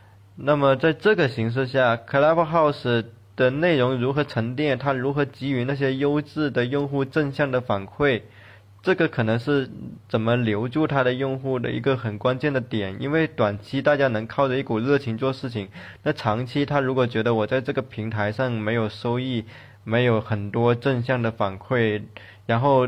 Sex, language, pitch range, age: male, Chinese, 105-135 Hz, 20-39